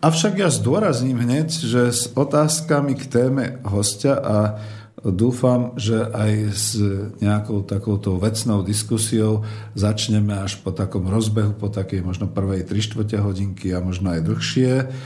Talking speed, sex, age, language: 135 wpm, male, 50-69, Slovak